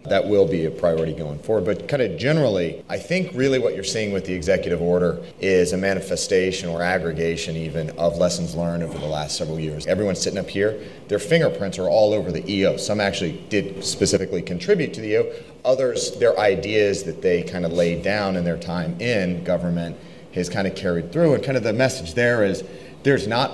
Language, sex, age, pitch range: English, male, 30-49, 85-130 Hz